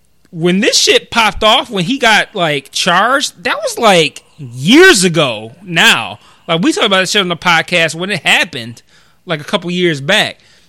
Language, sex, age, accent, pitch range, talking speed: English, male, 20-39, American, 145-180 Hz, 185 wpm